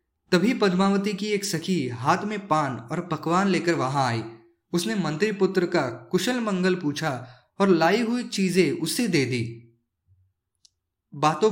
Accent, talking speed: native, 145 wpm